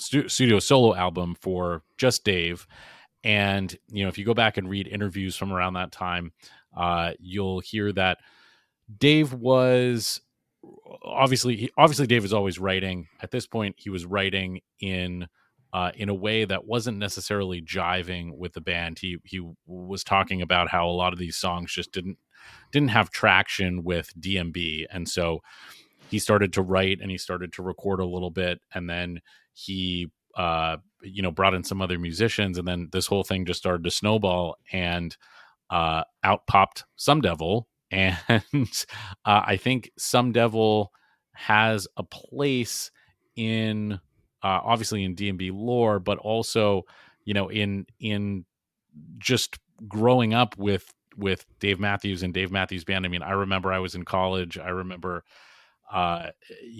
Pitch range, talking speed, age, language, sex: 90-105 Hz, 160 wpm, 30-49, English, male